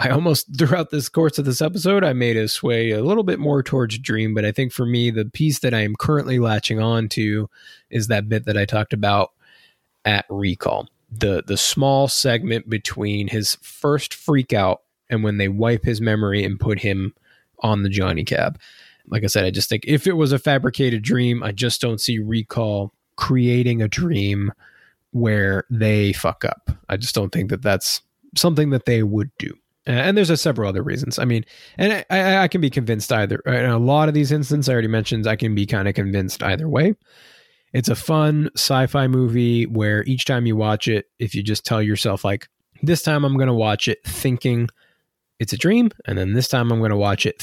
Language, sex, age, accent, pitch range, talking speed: English, male, 20-39, American, 105-135 Hz, 210 wpm